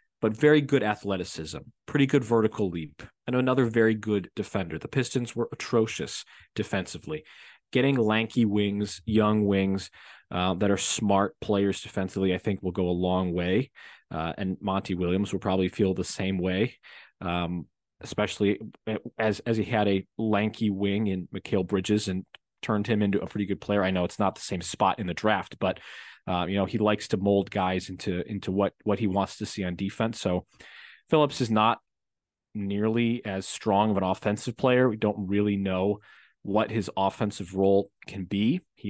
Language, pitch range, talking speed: English, 95-110 Hz, 180 wpm